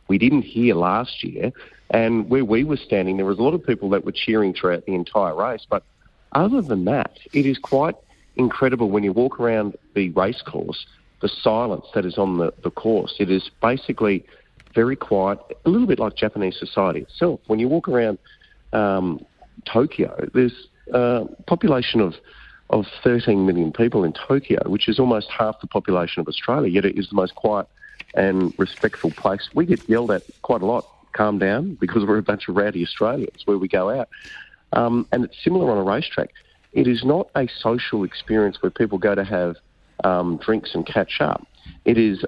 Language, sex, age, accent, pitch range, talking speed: English, male, 40-59, Australian, 95-115 Hz, 195 wpm